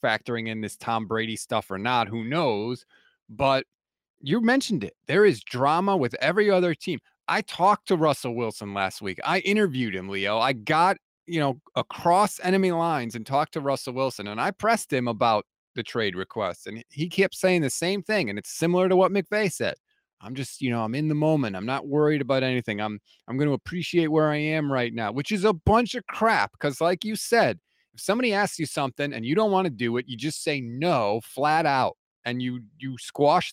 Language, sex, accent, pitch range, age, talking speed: English, male, American, 125-180 Hz, 30-49, 215 wpm